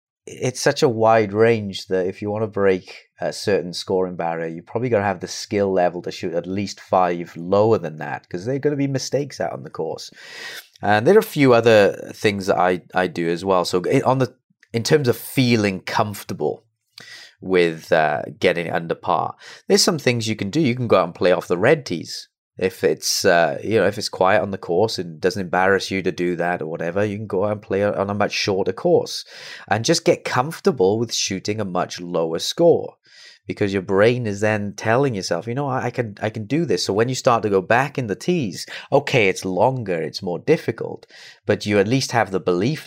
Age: 30-49